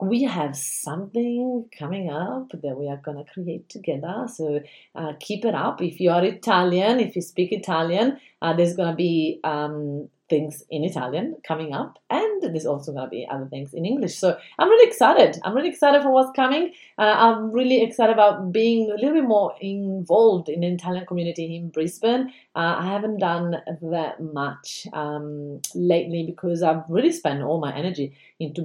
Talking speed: 185 wpm